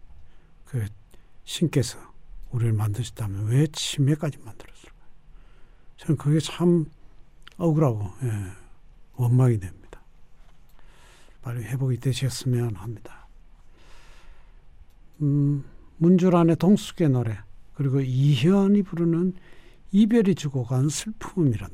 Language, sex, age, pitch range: Korean, male, 60-79, 110-155 Hz